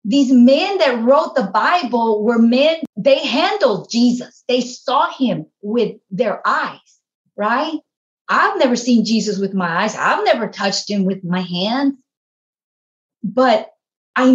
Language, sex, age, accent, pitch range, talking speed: English, female, 30-49, American, 215-270 Hz, 140 wpm